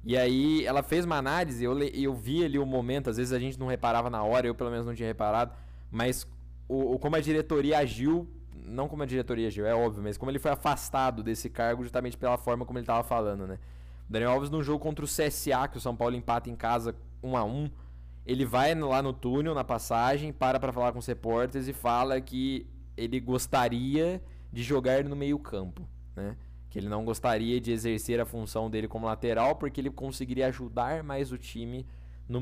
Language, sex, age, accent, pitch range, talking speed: Portuguese, male, 10-29, Brazilian, 110-140 Hz, 210 wpm